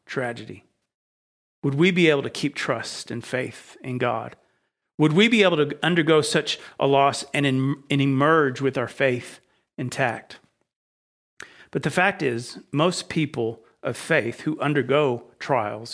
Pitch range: 125-150 Hz